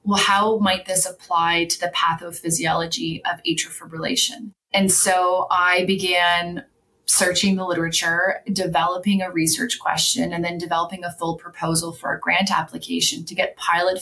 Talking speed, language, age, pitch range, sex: 150 wpm, English, 30-49, 175-215 Hz, female